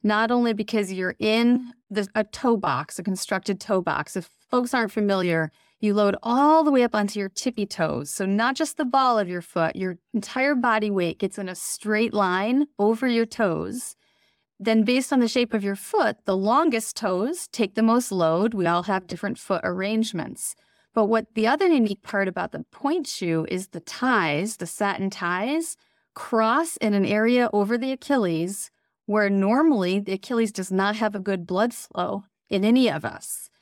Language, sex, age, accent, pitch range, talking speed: English, female, 30-49, American, 190-245 Hz, 185 wpm